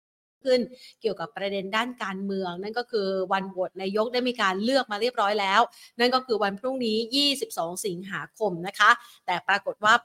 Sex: female